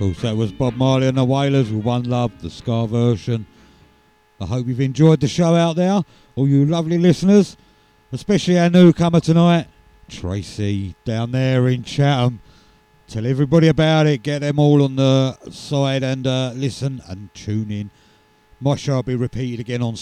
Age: 50-69